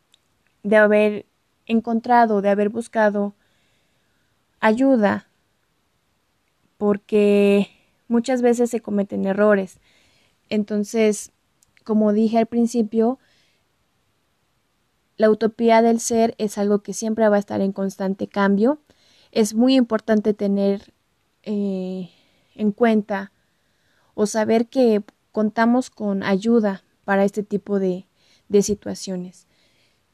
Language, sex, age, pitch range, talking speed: Spanish, female, 20-39, 200-225 Hz, 100 wpm